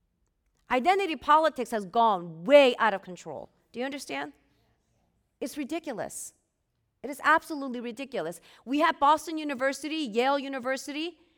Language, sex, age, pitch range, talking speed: English, female, 40-59, 235-335 Hz, 120 wpm